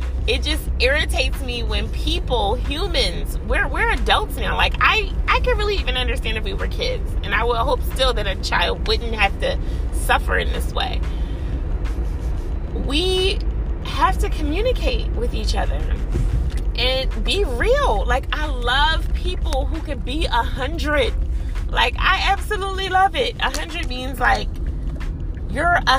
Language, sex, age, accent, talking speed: English, female, 30-49, American, 155 wpm